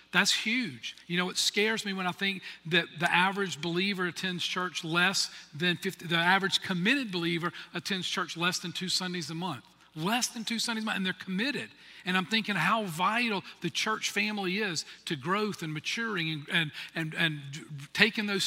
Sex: male